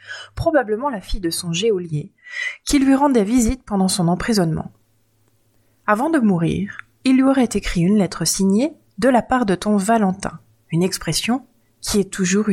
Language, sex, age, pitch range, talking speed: French, female, 30-49, 175-250 Hz, 165 wpm